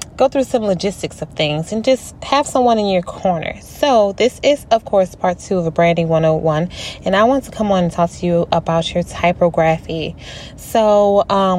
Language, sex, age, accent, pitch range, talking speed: English, female, 20-39, American, 165-200 Hz, 200 wpm